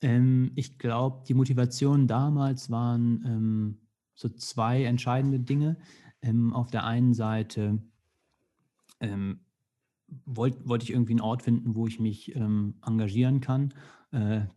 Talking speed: 125 wpm